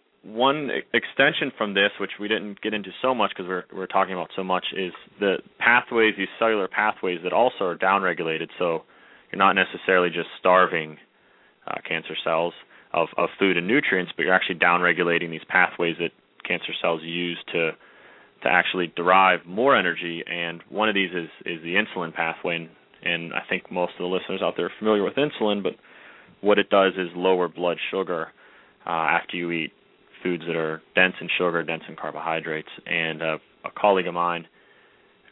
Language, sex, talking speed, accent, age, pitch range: English, male, 185 wpm, American, 30-49, 85-95 Hz